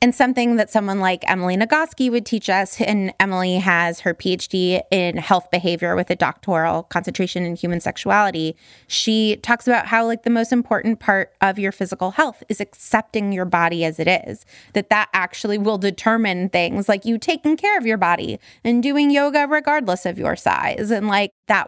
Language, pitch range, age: English, 185-230 Hz, 20-39